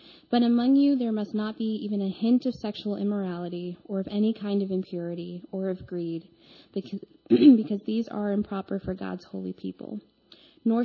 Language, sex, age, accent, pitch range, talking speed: English, female, 20-39, American, 190-225 Hz, 175 wpm